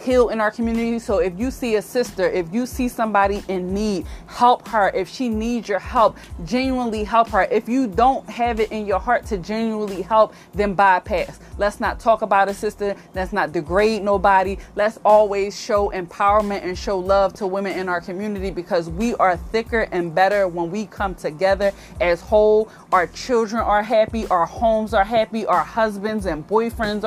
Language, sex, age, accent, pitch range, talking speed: English, female, 20-39, American, 195-235 Hz, 190 wpm